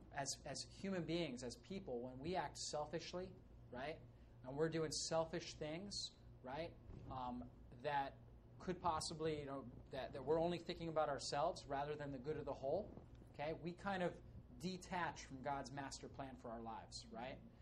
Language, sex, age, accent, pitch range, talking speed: English, male, 30-49, American, 130-165 Hz, 170 wpm